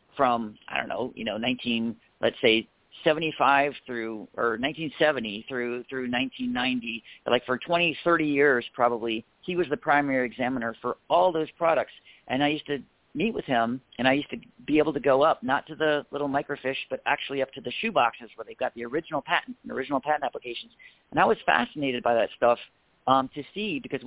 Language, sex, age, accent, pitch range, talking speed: English, male, 50-69, American, 125-155 Hz, 195 wpm